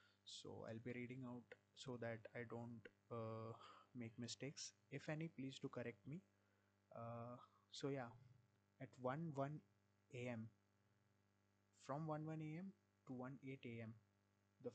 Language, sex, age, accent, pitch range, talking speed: Hindi, male, 20-39, native, 105-140 Hz, 140 wpm